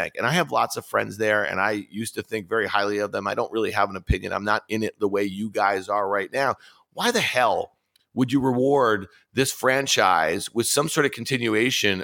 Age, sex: 40-59, male